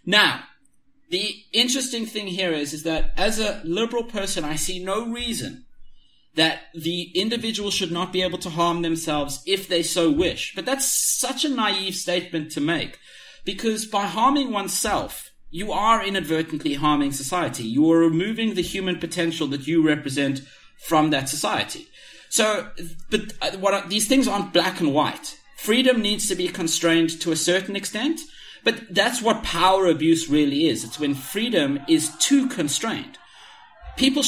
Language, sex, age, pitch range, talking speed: English, male, 30-49, 150-200 Hz, 160 wpm